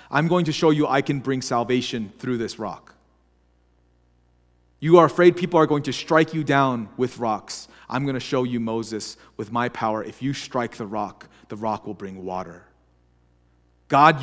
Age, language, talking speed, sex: 30-49, English, 185 wpm, male